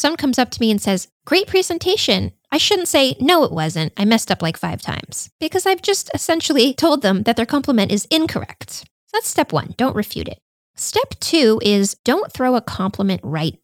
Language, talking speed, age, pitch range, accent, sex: English, 200 wpm, 20-39, 185-290 Hz, American, female